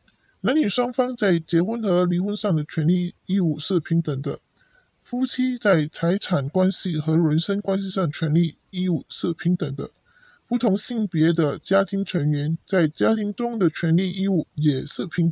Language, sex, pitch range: Chinese, female, 160-210 Hz